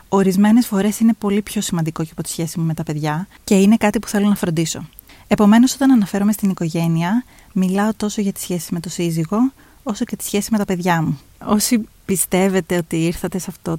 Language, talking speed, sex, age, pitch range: Greek, 210 wpm, female, 30-49, 175-210 Hz